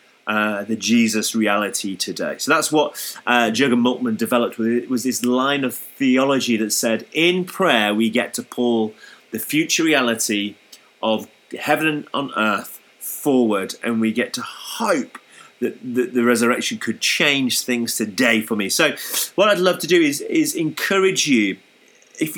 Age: 30-49